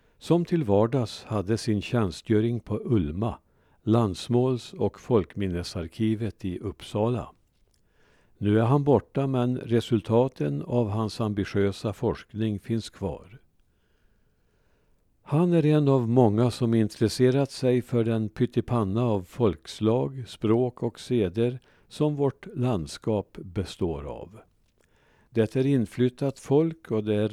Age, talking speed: 50-69, 115 wpm